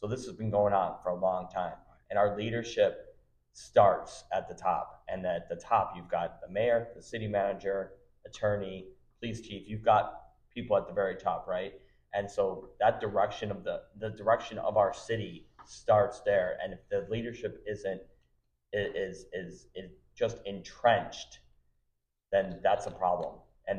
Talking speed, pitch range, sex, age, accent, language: 170 wpm, 85-110 Hz, male, 30-49, American, English